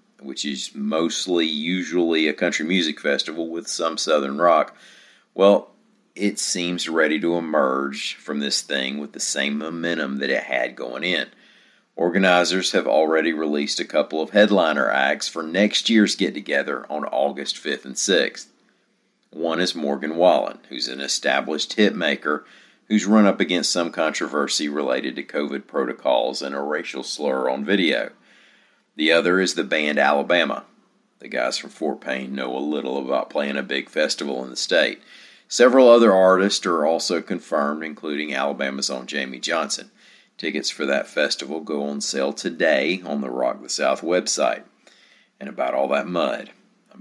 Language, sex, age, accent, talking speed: English, male, 50-69, American, 160 wpm